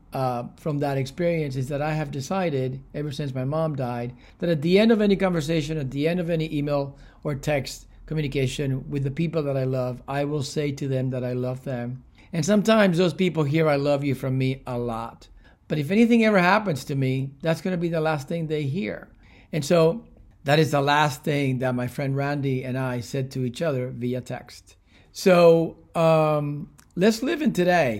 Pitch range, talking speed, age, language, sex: 135-170 Hz, 210 wpm, 50-69, English, male